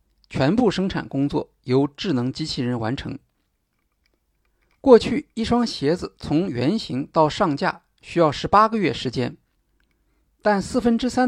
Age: 50-69